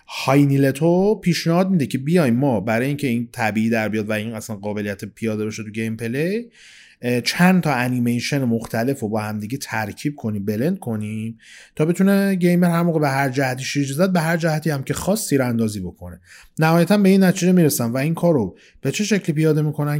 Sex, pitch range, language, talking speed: male, 120-165 Hz, Persian, 190 wpm